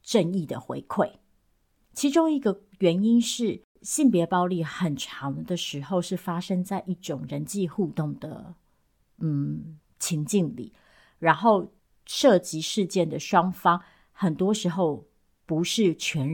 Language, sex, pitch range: Chinese, female, 170-205 Hz